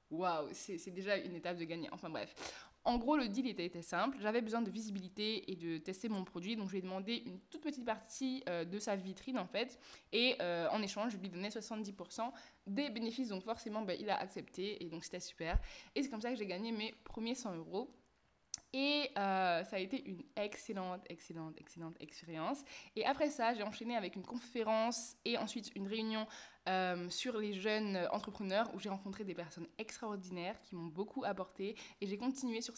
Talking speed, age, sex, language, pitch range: 205 wpm, 20-39, female, French, 180-235 Hz